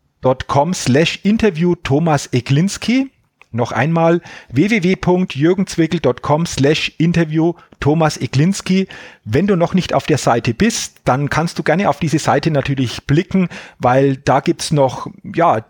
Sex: male